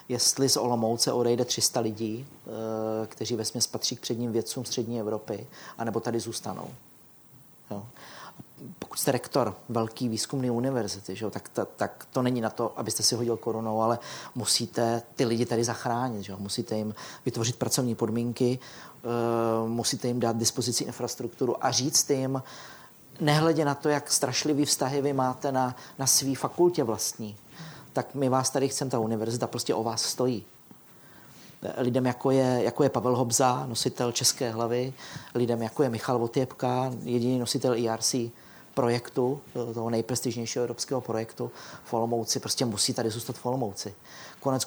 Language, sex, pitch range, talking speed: Czech, male, 115-130 Hz, 155 wpm